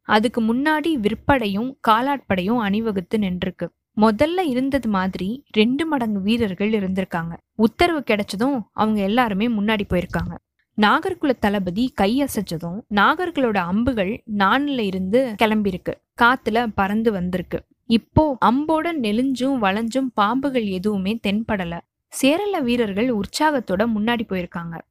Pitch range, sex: 200-265 Hz, female